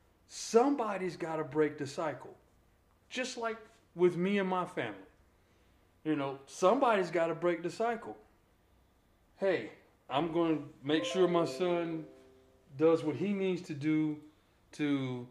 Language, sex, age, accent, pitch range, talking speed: English, male, 30-49, American, 120-165 Hz, 140 wpm